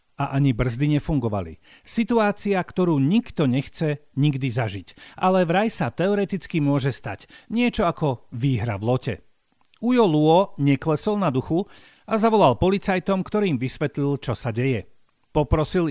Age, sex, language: 50-69, male, Slovak